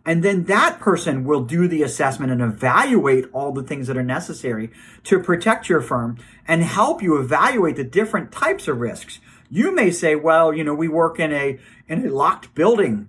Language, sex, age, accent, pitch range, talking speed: English, male, 50-69, American, 130-175 Hz, 195 wpm